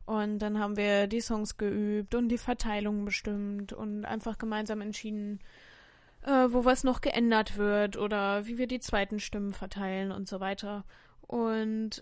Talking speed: 155 wpm